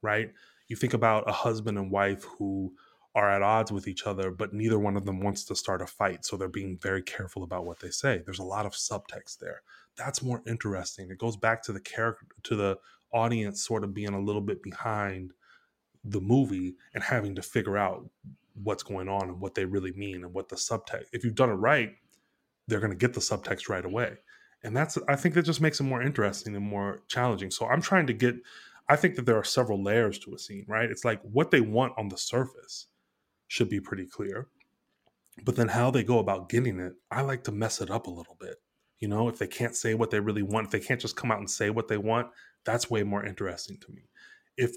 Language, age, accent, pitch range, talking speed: English, 20-39, American, 100-120 Hz, 235 wpm